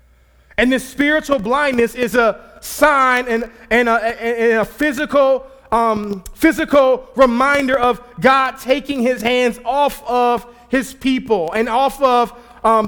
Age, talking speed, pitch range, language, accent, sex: 20-39, 135 wpm, 170-245 Hz, English, American, male